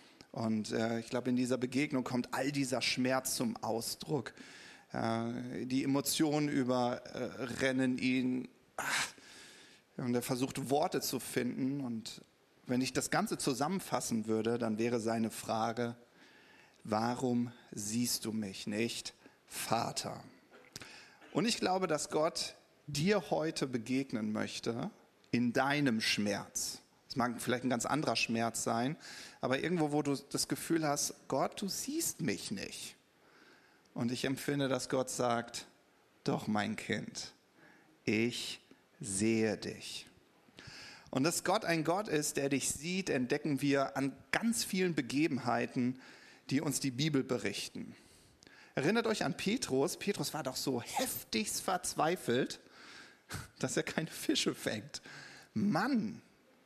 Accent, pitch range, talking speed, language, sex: German, 120-150 Hz, 125 wpm, German, male